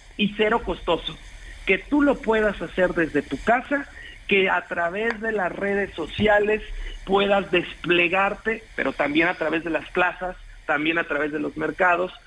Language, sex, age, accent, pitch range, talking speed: Spanish, male, 50-69, Mexican, 170-225 Hz, 160 wpm